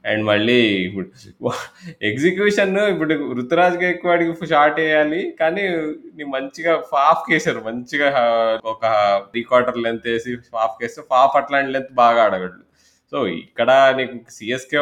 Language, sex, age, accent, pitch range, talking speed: Telugu, male, 20-39, native, 110-140 Hz, 125 wpm